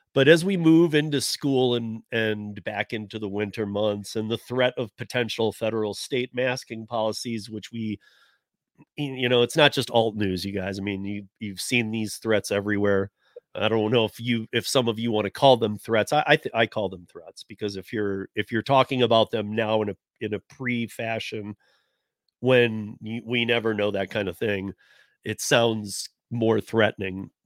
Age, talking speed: 40-59, 195 wpm